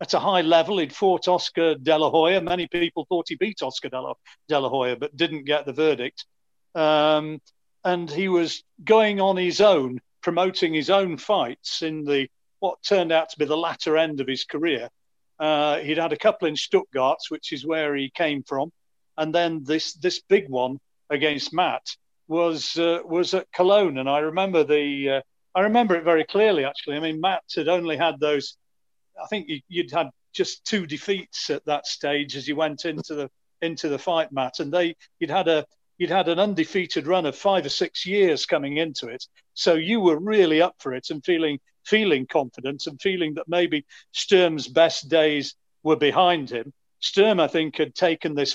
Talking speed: 195 wpm